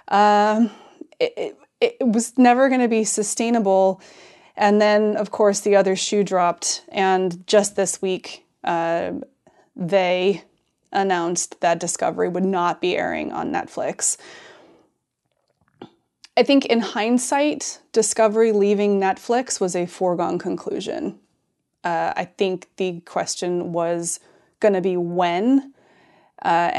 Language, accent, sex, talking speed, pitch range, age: English, American, female, 125 wpm, 185-225 Hz, 20-39